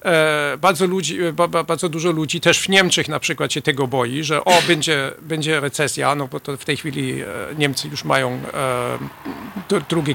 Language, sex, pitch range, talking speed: Polish, male, 145-175 Hz, 195 wpm